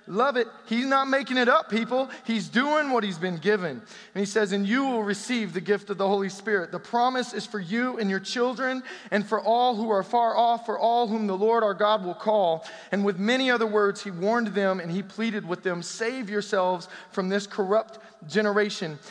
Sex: male